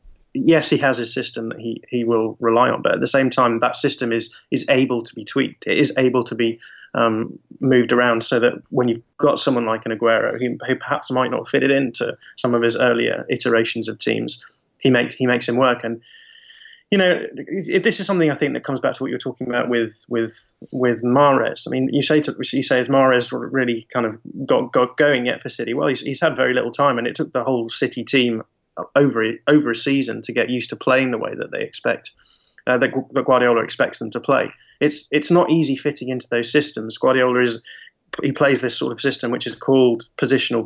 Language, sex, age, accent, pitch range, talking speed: English, male, 20-39, British, 115-135 Hz, 235 wpm